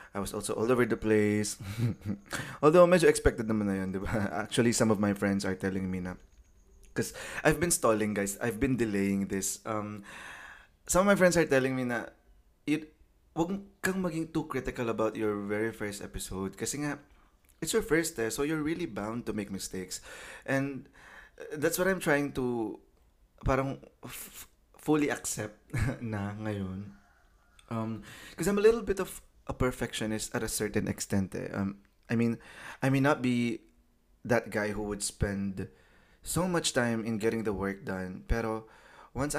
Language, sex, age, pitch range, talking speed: English, male, 20-39, 100-135 Hz, 170 wpm